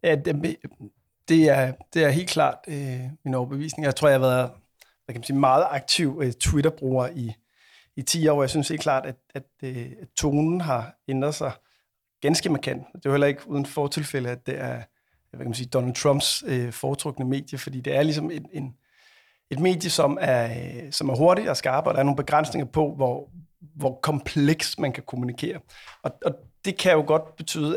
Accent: native